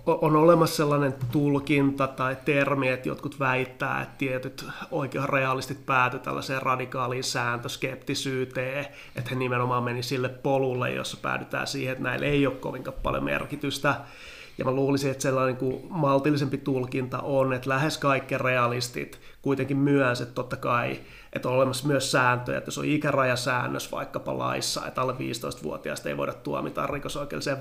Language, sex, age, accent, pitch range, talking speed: Finnish, male, 30-49, native, 130-140 Hz, 145 wpm